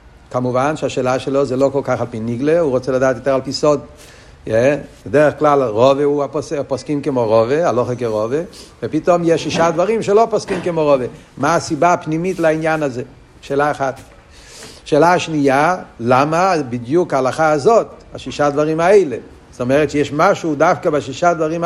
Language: Hebrew